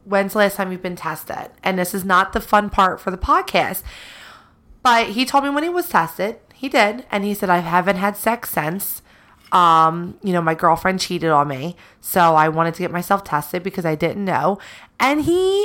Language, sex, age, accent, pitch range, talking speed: English, female, 30-49, American, 170-215 Hz, 215 wpm